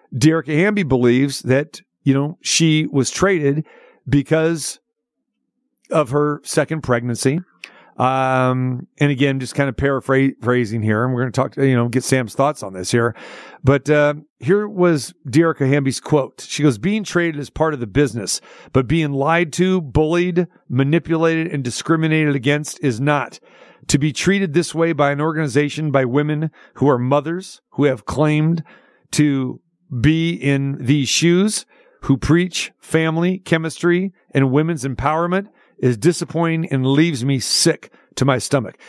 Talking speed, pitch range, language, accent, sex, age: 155 wpm, 135-160 Hz, English, American, male, 50-69